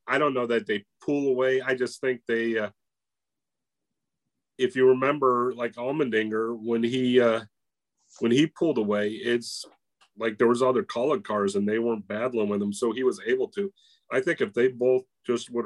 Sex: male